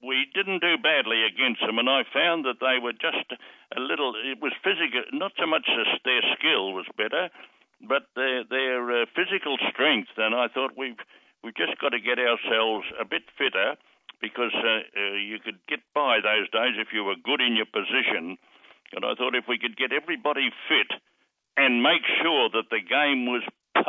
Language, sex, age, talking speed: English, male, 60-79, 190 wpm